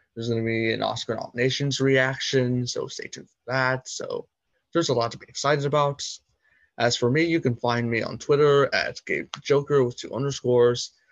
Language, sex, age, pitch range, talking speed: English, male, 20-39, 110-130 Hz, 190 wpm